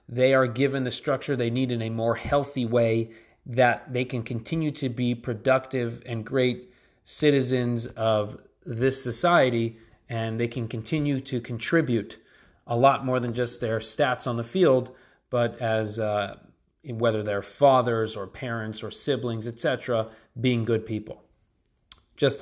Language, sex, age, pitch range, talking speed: English, male, 30-49, 115-135 Hz, 155 wpm